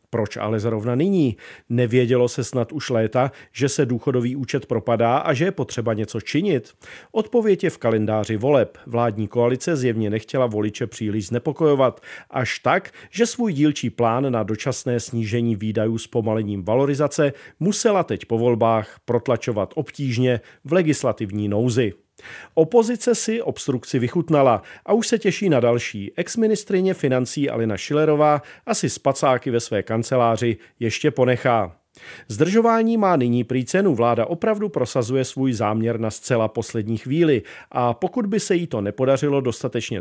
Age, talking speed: 40-59, 145 wpm